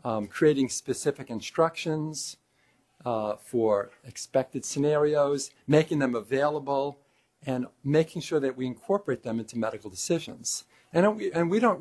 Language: English